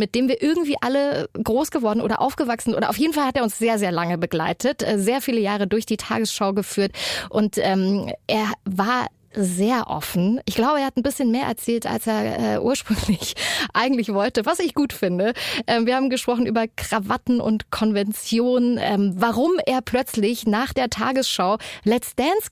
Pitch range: 205-255 Hz